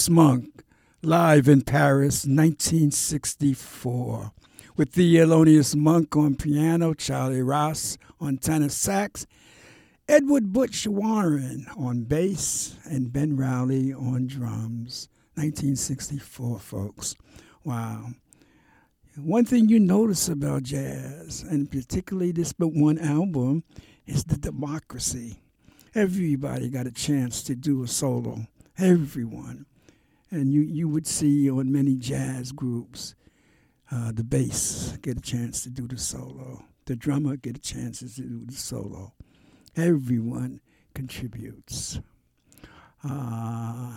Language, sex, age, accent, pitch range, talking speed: English, male, 60-79, American, 120-150 Hz, 115 wpm